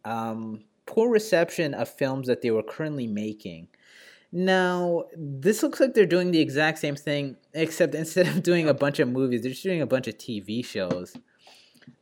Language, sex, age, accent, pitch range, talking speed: English, male, 20-39, American, 105-160 Hz, 185 wpm